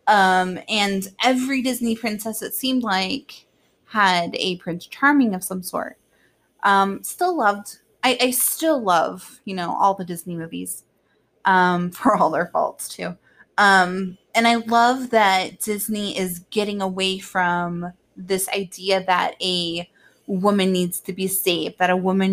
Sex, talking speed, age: female, 150 wpm, 20-39